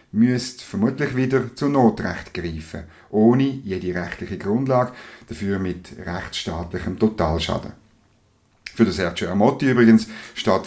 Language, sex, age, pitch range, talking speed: German, male, 50-69, 90-125 Hz, 105 wpm